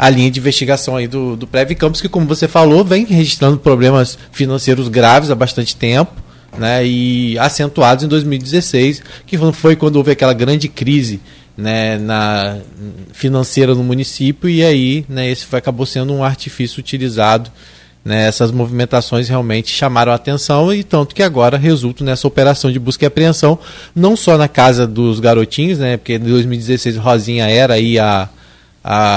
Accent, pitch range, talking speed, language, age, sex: Brazilian, 115-145 Hz, 165 wpm, Portuguese, 20-39, male